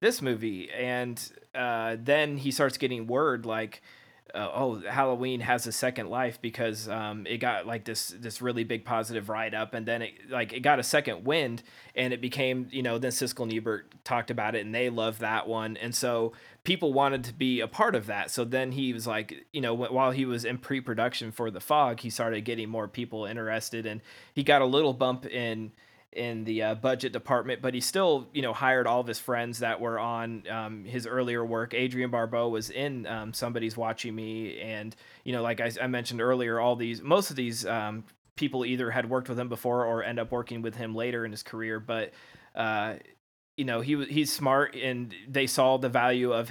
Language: English